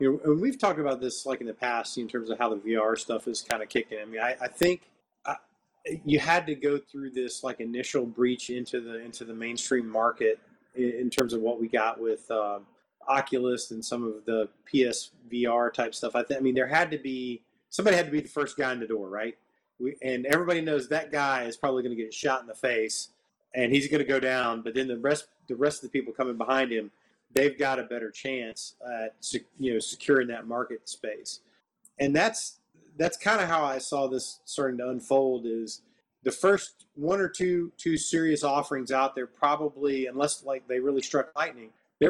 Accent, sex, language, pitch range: American, male, English, 120-145 Hz